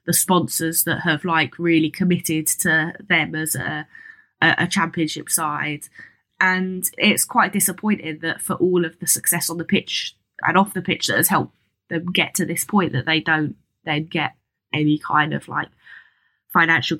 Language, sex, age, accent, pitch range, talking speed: English, female, 20-39, British, 160-190 Hz, 175 wpm